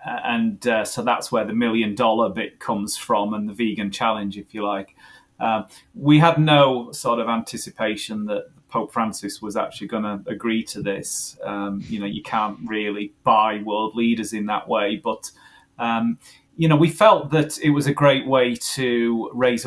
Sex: male